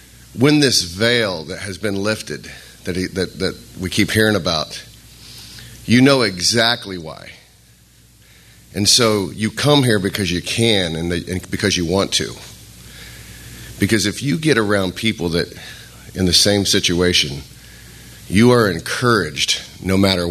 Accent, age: American, 50-69